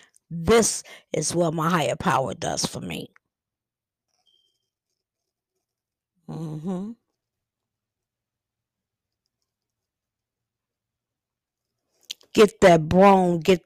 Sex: female